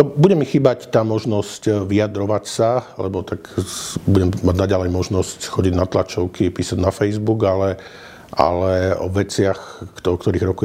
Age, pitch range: 50-69, 90-105 Hz